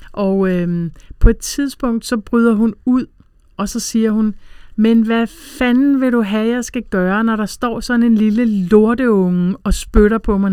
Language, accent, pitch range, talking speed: Danish, native, 175-225 Hz, 190 wpm